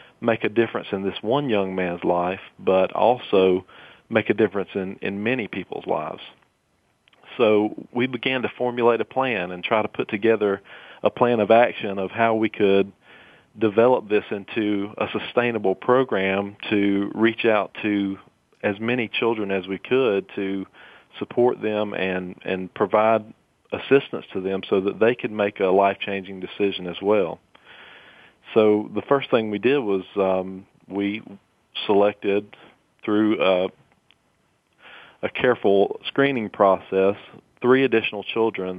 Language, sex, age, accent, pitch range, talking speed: English, male, 40-59, American, 95-110 Hz, 145 wpm